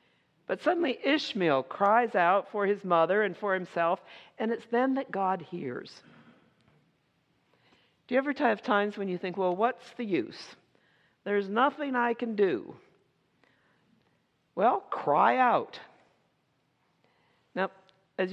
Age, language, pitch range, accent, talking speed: 60-79, English, 180-240 Hz, American, 130 wpm